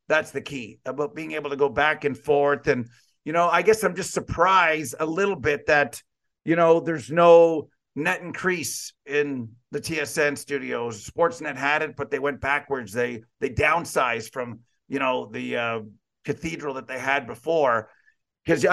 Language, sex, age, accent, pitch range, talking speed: English, male, 50-69, American, 140-170 Hz, 175 wpm